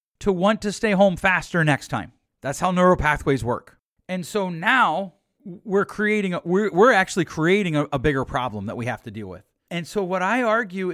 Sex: male